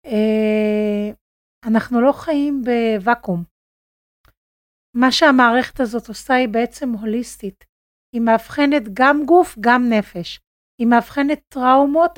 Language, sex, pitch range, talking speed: Hebrew, female, 225-285 Hz, 100 wpm